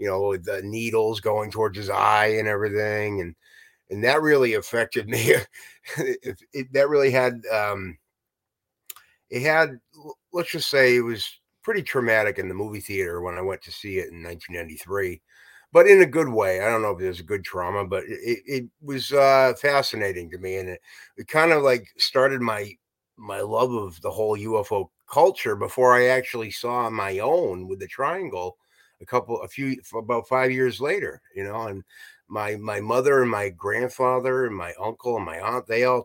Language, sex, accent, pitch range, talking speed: English, male, American, 105-140 Hz, 190 wpm